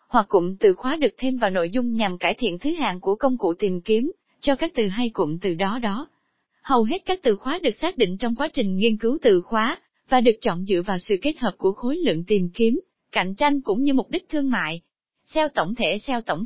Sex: female